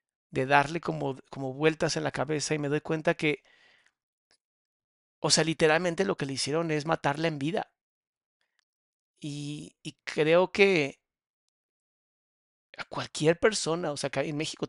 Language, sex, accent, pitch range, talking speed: Spanish, male, Mexican, 145-170 Hz, 145 wpm